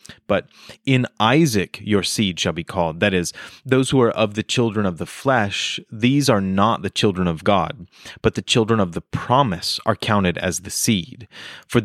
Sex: male